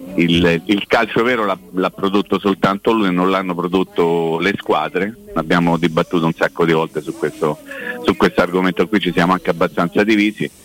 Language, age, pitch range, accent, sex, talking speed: Italian, 50-69, 85-105 Hz, native, male, 170 wpm